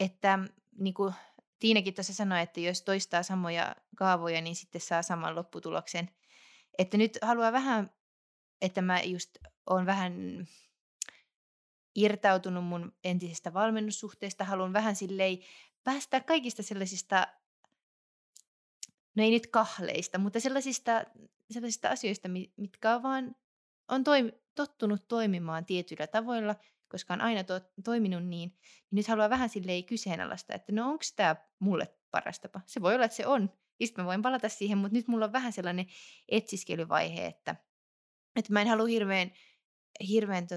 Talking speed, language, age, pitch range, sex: 135 wpm, Finnish, 20-39, 175-220 Hz, female